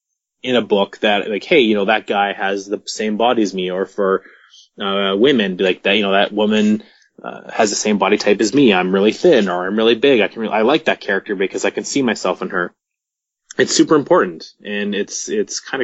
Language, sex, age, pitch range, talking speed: English, male, 20-39, 100-120 Hz, 240 wpm